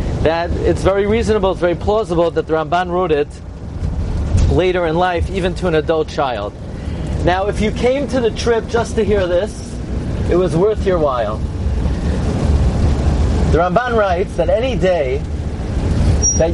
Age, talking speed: 40-59, 155 wpm